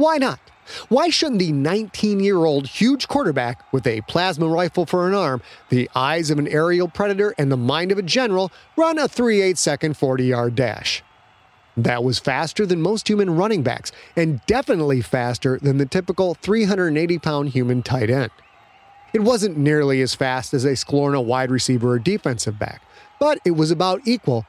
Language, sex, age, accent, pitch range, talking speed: English, male, 30-49, American, 125-170 Hz, 170 wpm